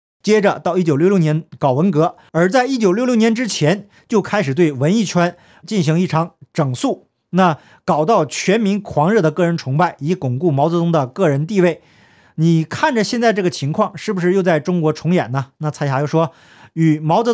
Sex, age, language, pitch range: male, 50-69, Chinese, 150-195 Hz